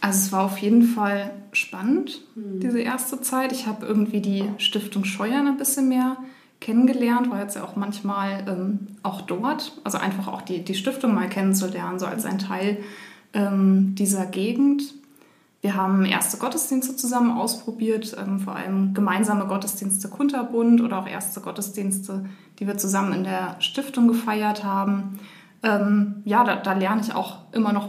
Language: German